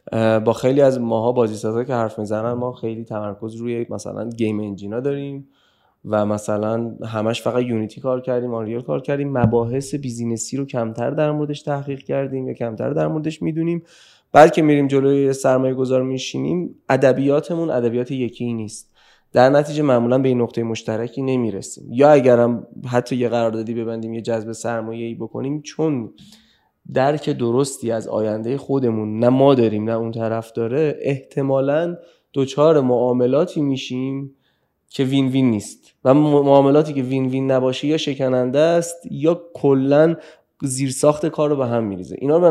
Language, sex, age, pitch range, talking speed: Persian, male, 20-39, 115-140 Hz, 155 wpm